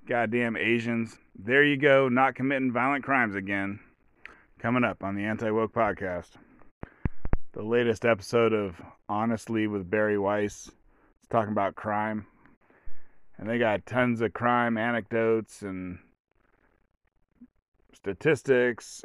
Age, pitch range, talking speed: 30-49, 105-120 Hz, 115 wpm